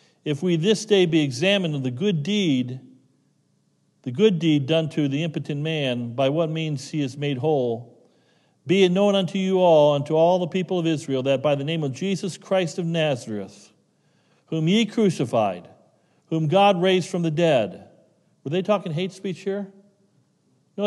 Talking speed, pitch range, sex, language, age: 180 wpm, 145-185 Hz, male, English, 40-59